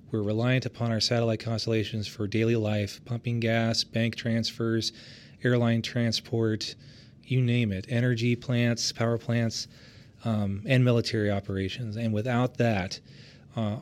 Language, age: English, 30-49